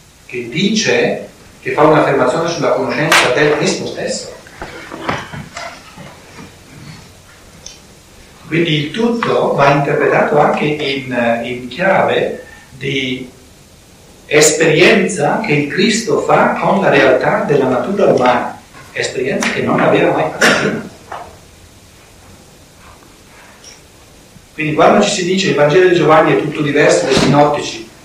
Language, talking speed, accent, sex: Italian, 110 wpm, native, male